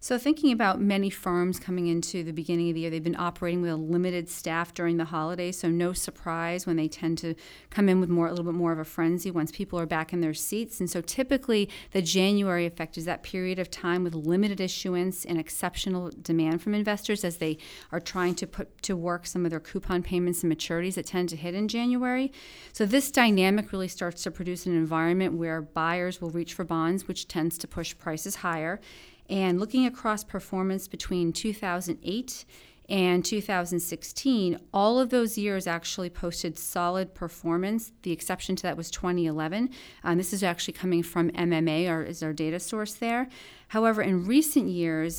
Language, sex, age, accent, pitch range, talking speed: English, female, 40-59, American, 170-195 Hz, 190 wpm